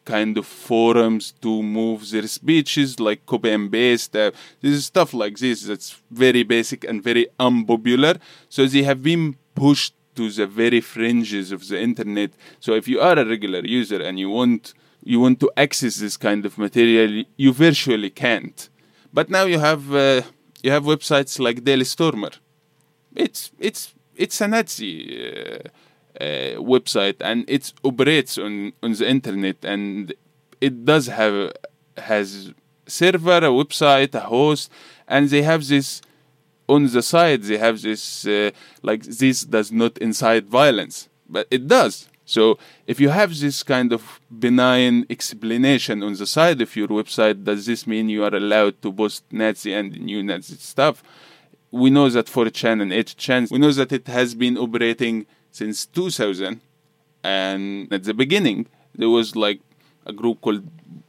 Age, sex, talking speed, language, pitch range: 20-39, male, 160 wpm, English, 110-145 Hz